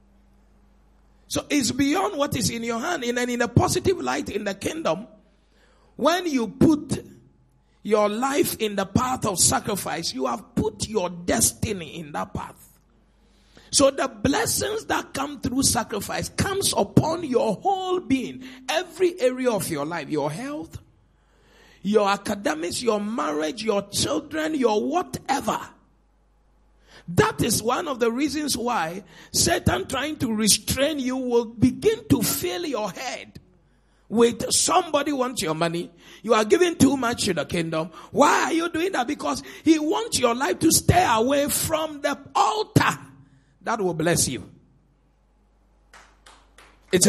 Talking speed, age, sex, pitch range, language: 145 wpm, 50-69, male, 210-305 Hz, English